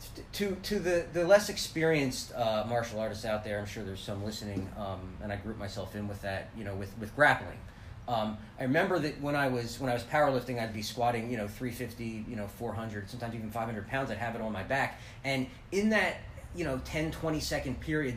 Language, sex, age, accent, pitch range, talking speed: English, male, 30-49, American, 110-135 Hz, 235 wpm